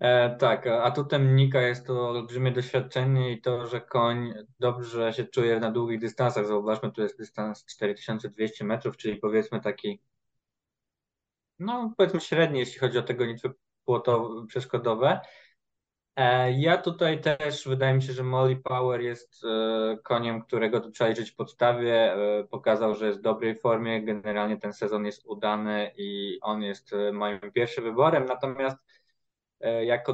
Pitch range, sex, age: 110-130 Hz, male, 20-39